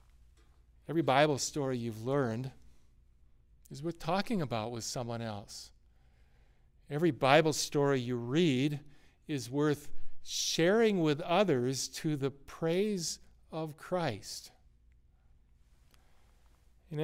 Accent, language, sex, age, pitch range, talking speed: American, English, male, 50-69, 105-150 Hz, 100 wpm